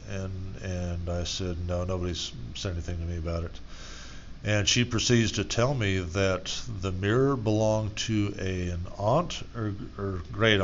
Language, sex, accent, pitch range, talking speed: English, male, American, 90-105 Hz, 165 wpm